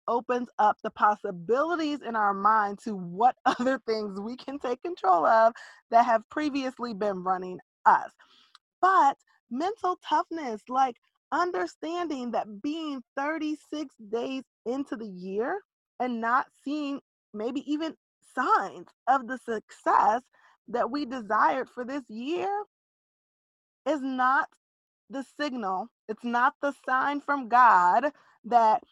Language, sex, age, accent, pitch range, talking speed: English, female, 20-39, American, 215-280 Hz, 125 wpm